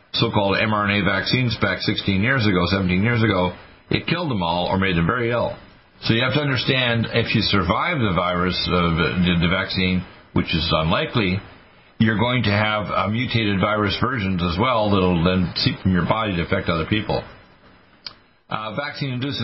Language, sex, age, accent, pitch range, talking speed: English, male, 50-69, American, 95-120 Hz, 180 wpm